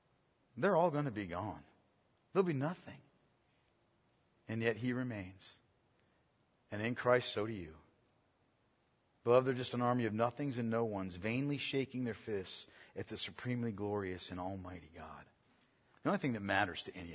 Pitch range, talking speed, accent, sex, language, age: 105-135 Hz, 165 wpm, American, male, English, 40-59